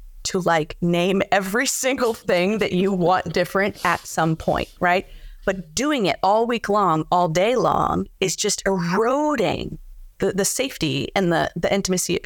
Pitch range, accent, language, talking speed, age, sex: 170-220 Hz, American, English, 165 wpm, 30-49, female